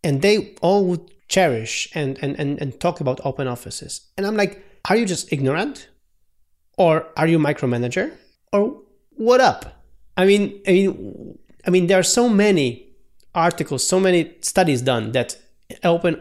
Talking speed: 165 wpm